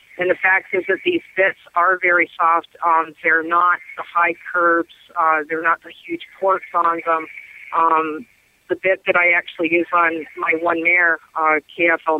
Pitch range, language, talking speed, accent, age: 160-180 Hz, English, 180 wpm, American, 50-69